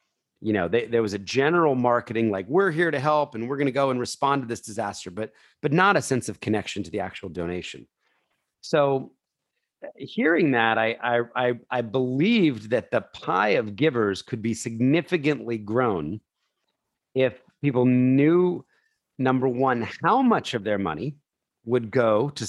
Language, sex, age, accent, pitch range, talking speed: English, male, 40-59, American, 110-145 Hz, 170 wpm